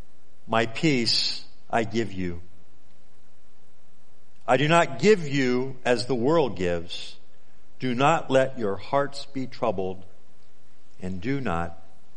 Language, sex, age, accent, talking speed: English, male, 50-69, American, 120 wpm